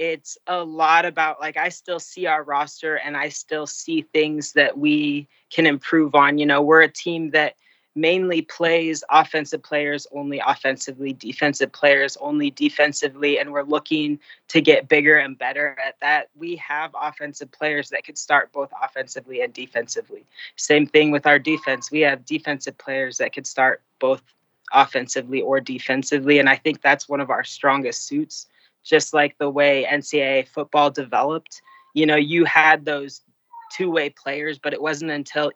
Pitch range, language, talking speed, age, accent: 140-160 Hz, English, 170 wpm, 20-39, American